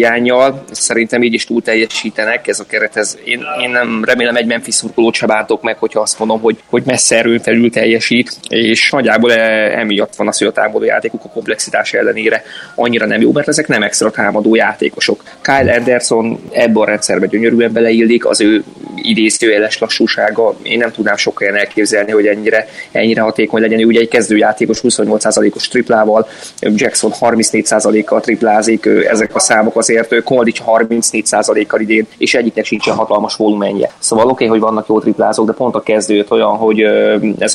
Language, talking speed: Hungarian, 170 wpm